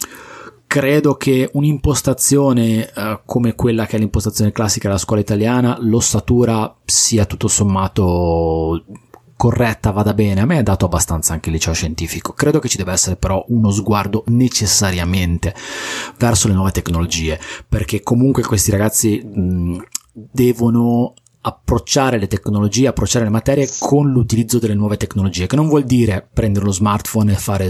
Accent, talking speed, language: native, 145 wpm, Italian